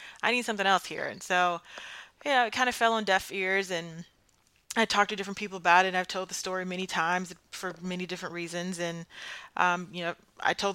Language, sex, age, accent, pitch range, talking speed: English, female, 30-49, American, 165-190 Hz, 230 wpm